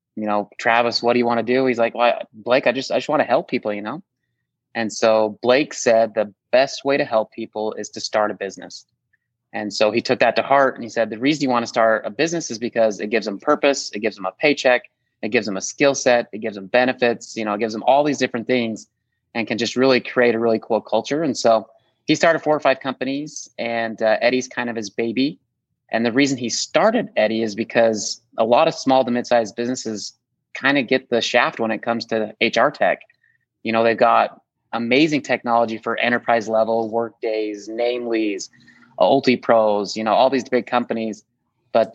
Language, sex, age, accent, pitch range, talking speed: English, male, 30-49, American, 110-125 Hz, 225 wpm